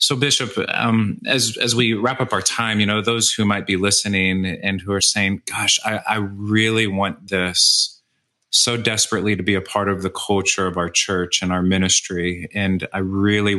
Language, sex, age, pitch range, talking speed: English, male, 30-49, 95-110 Hz, 200 wpm